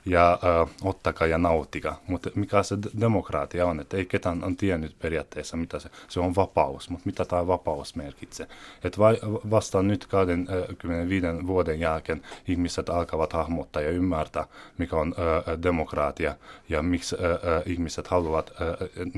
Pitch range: 85-100 Hz